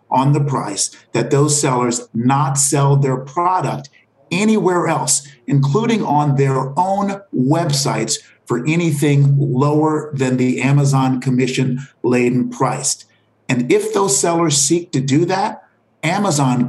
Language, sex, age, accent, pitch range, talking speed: English, male, 50-69, American, 130-155 Hz, 120 wpm